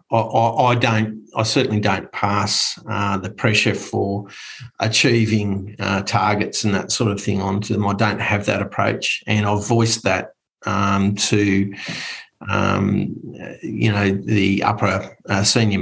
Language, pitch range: English, 100-110 Hz